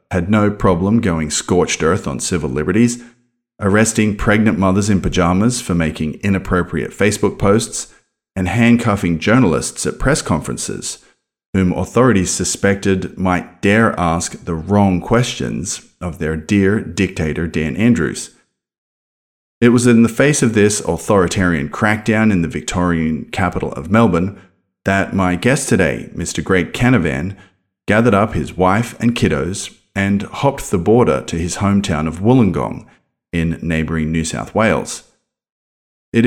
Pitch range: 85-110 Hz